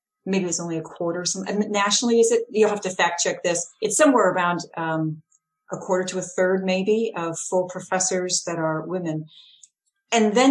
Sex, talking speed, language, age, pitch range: female, 195 wpm, English, 40-59, 170-235 Hz